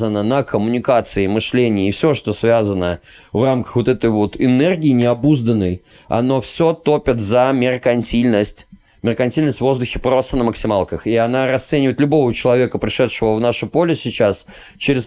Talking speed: 145 wpm